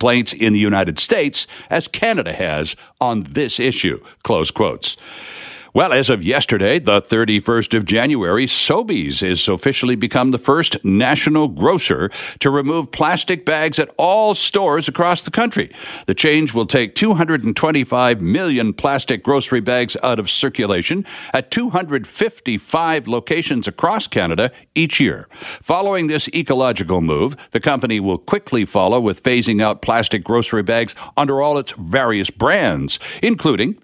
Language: English